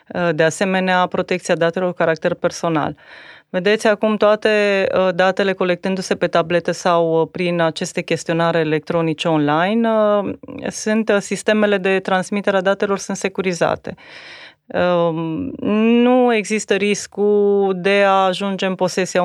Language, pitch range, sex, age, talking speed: Romanian, 165-200 Hz, female, 30-49, 110 wpm